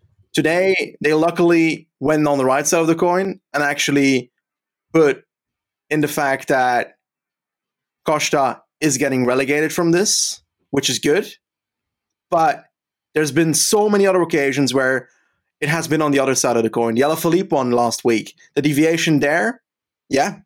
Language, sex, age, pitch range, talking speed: English, male, 20-39, 135-165 Hz, 160 wpm